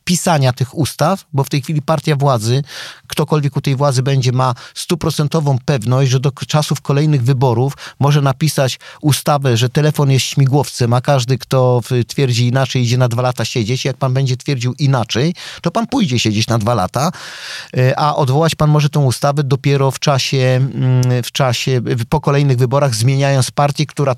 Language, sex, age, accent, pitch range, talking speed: Polish, male, 40-59, native, 130-155 Hz, 165 wpm